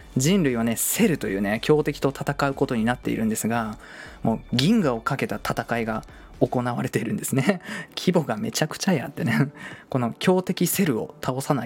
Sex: male